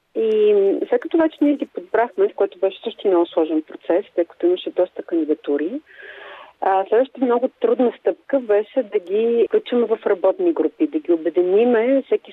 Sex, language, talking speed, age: female, Bulgarian, 165 wpm, 40-59